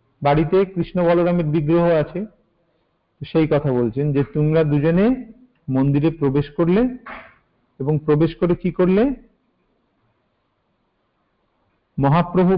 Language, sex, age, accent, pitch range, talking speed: Hindi, male, 50-69, native, 135-180 Hz, 75 wpm